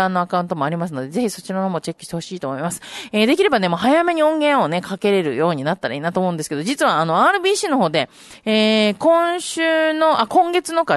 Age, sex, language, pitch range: 30-49, female, Japanese, 170-270 Hz